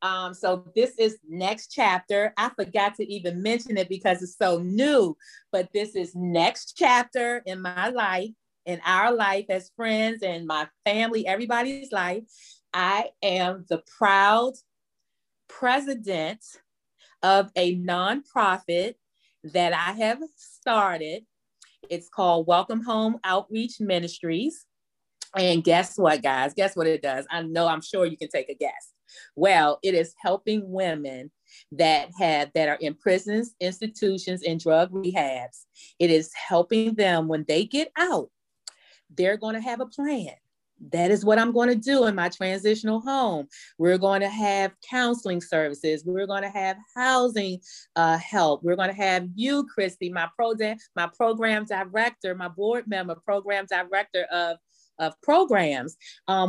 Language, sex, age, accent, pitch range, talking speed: English, female, 30-49, American, 175-220 Hz, 150 wpm